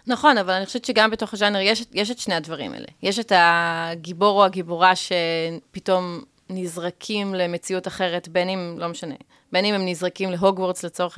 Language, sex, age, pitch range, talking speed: Hebrew, female, 30-49, 175-220 Hz, 170 wpm